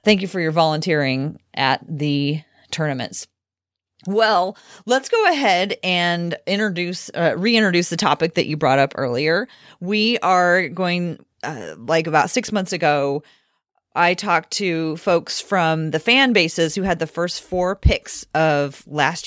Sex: female